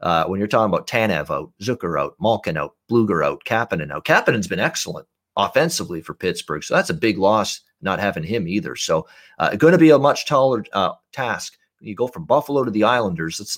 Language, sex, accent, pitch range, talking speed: English, male, American, 105-150 Hz, 215 wpm